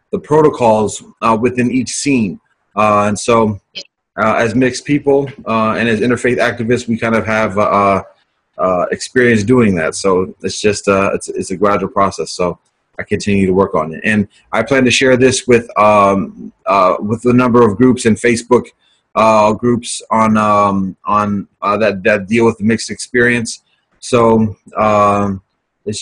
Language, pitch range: English, 105-130 Hz